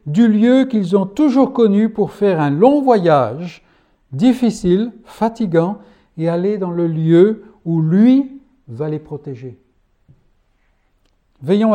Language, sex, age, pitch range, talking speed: French, male, 60-79, 145-205 Hz, 125 wpm